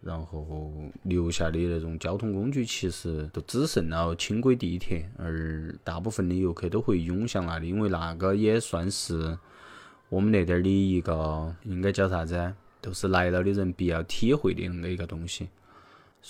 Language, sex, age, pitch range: Chinese, male, 20-39, 85-100 Hz